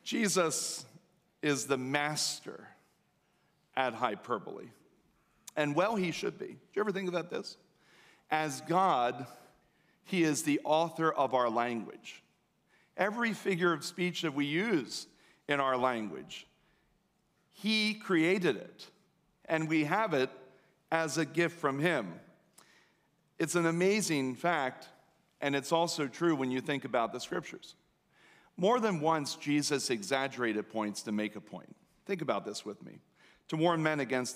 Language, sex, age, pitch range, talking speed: English, male, 40-59, 130-170 Hz, 140 wpm